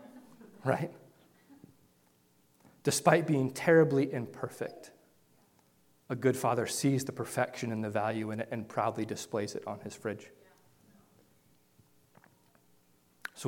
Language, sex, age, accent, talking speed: English, male, 30-49, American, 105 wpm